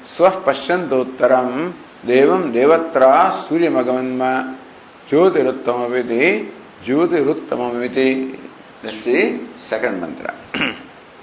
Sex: male